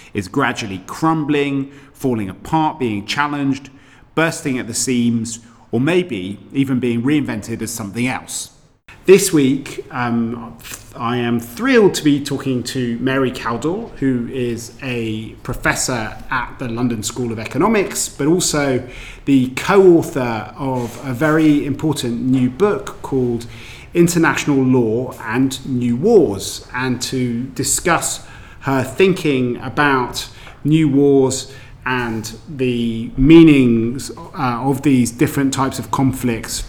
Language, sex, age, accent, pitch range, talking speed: English, male, 30-49, British, 115-140 Hz, 125 wpm